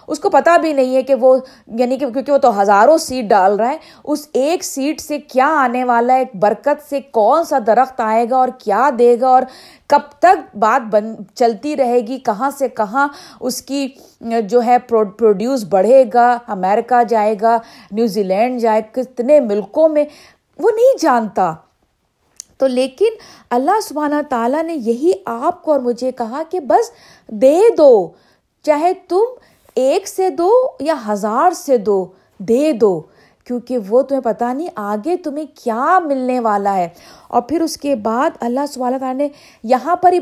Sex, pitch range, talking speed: female, 220-295 Hz, 175 wpm